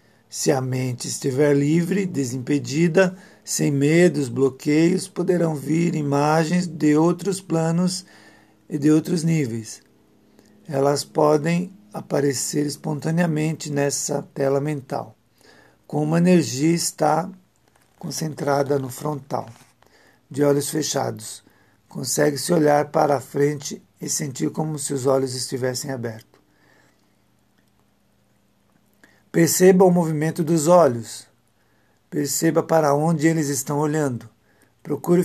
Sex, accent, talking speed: male, Brazilian, 105 wpm